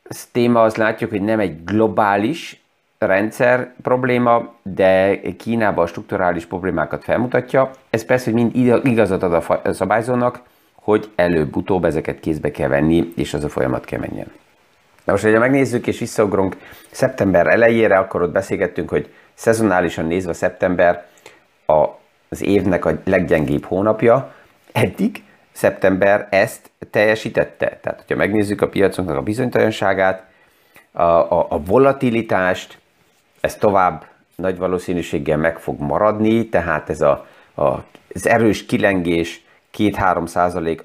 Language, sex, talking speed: Hungarian, male, 125 wpm